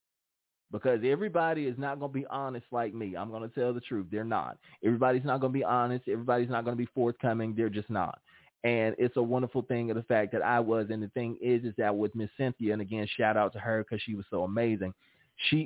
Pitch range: 105-125 Hz